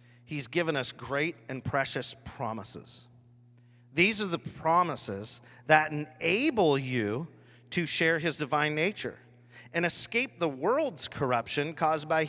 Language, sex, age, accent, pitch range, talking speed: English, male, 40-59, American, 120-155 Hz, 125 wpm